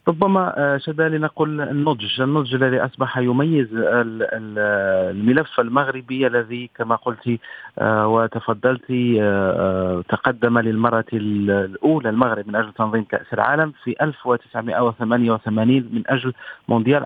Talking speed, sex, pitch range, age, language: 105 wpm, male, 110-130 Hz, 40-59, Arabic